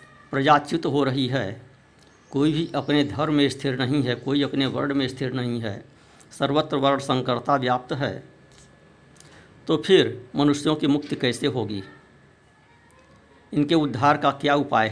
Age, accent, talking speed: 60-79, native, 150 wpm